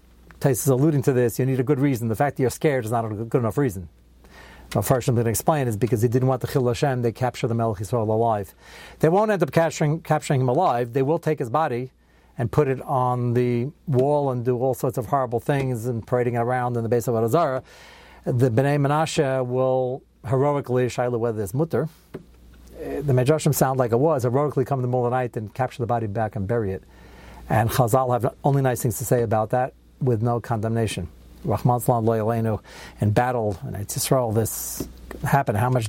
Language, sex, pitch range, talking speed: English, male, 115-135 Hz, 215 wpm